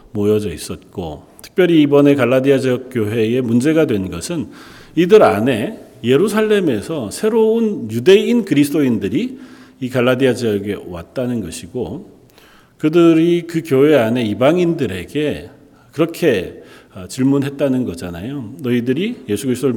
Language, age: Korean, 40-59